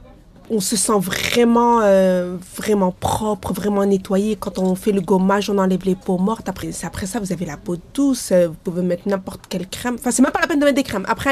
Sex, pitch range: female, 190-245 Hz